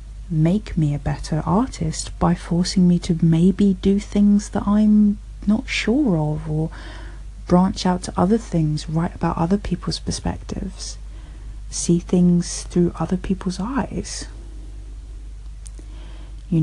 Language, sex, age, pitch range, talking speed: English, female, 30-49, 145-185 Hz, 125 wpm